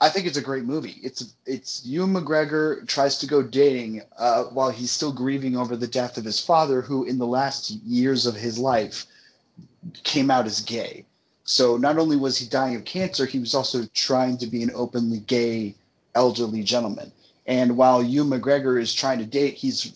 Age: 30-49